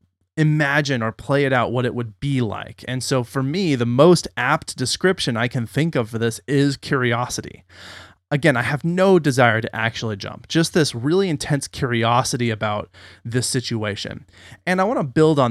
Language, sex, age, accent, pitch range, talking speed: English, male, 30-49, American, 115-145 Hz, 185 wpm